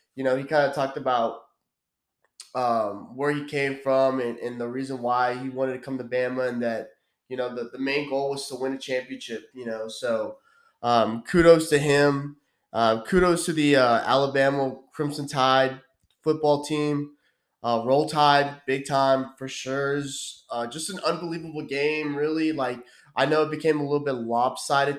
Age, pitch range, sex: 20-39, 130-145 Hz, male